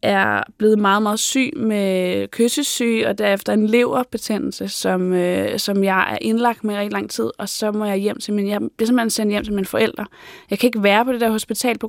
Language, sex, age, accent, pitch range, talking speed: Danish, female, 20-39, native, 200-235 Hz, 220 wpm